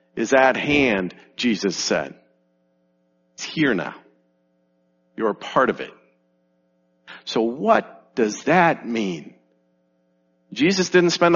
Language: English